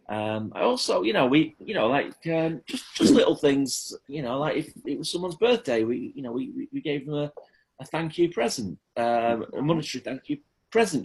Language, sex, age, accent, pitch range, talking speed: English, male, 40-59, British, 135-205 Hz, 215 wpm